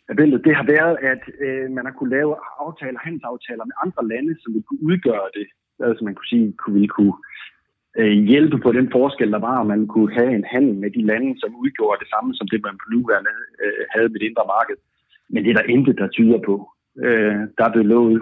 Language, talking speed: Danish, 225 wpm